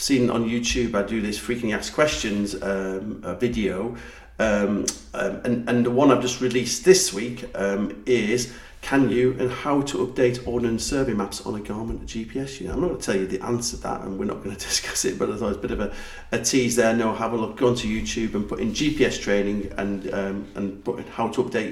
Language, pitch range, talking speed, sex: English, 95-120 Hz, 245 wpm, male